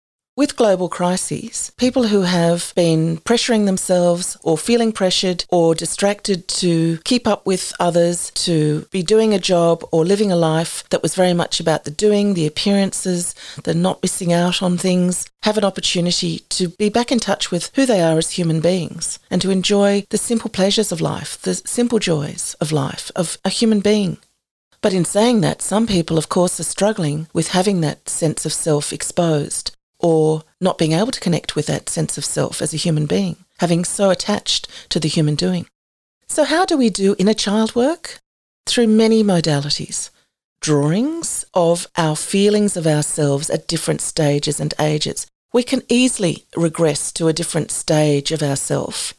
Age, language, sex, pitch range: 40-59, English, female, 165-205 Hz